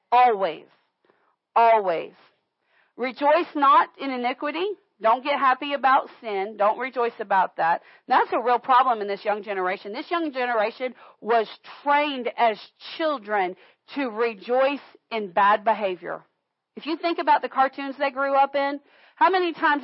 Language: English